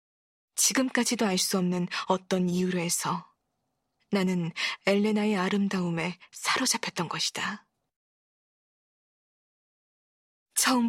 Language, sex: Korean, female